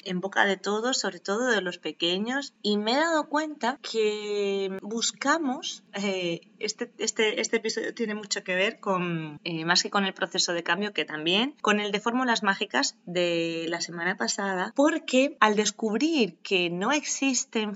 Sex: female